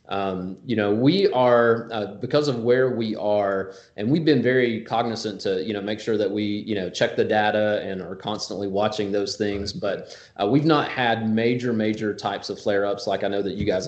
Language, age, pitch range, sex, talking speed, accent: English, 30-49, 105-120 Hz, male, 215 wpm, American